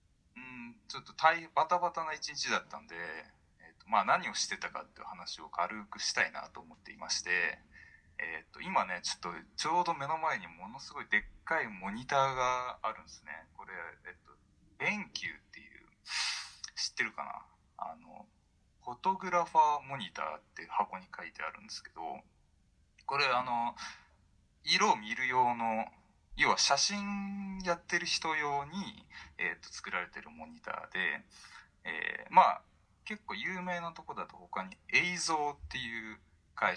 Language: Japanese